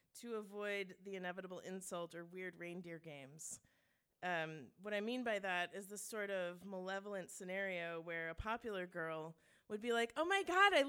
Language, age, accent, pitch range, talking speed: English, 30-49, American, 180-225 Hz, 175 wpm